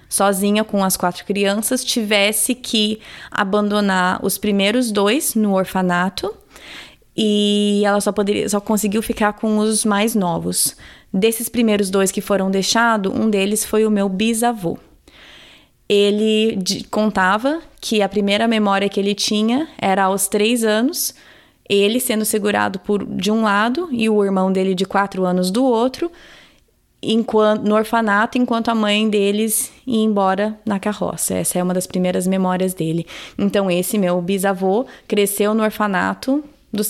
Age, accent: 20-39, Brazilian